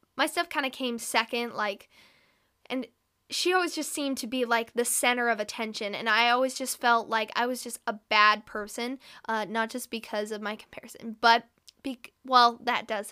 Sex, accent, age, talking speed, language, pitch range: female, American, 10-29, 190 wpm, English, 220-260 Hz